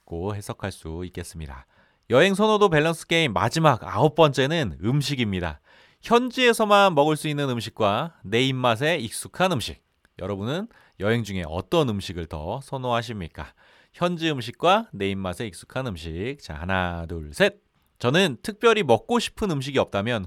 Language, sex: Korean, male